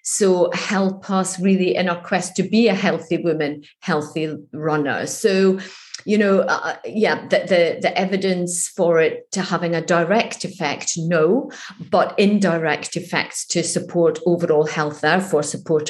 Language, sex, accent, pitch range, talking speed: English, female, British, 170-200 Hz, 150 wpm